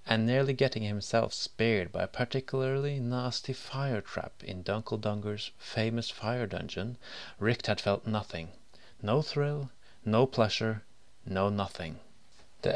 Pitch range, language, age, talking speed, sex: 100-130 Hz, English, 30-49, 120 wpm, male